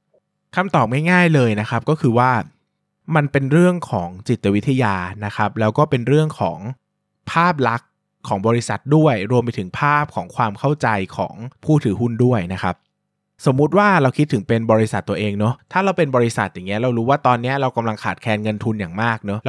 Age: 20-39